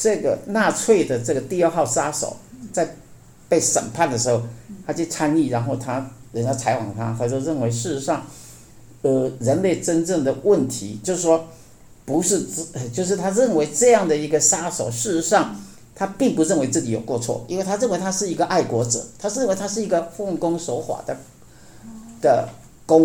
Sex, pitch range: male, 120-180 Hz